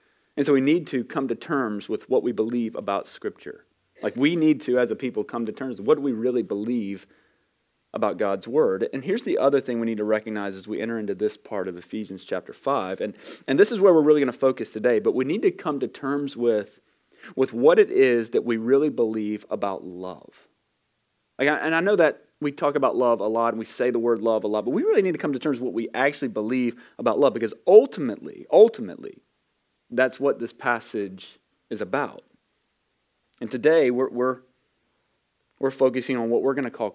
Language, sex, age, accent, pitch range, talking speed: English, male, 30-49, American, 120-160 Hz, 220 wpm